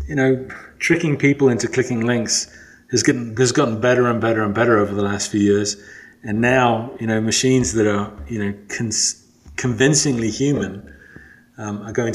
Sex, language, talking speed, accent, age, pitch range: male, English, 175 wpm, British, 30-49, 110-130 Hz